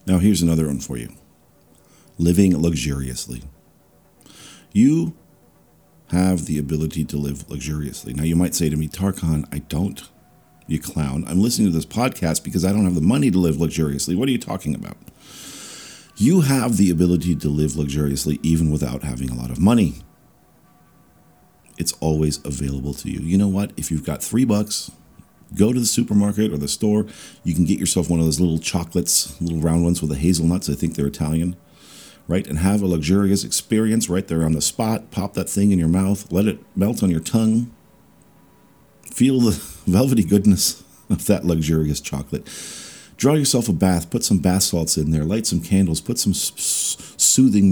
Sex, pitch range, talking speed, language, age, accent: male, 75-95 Hz, 180 wpm, English, 50-69, American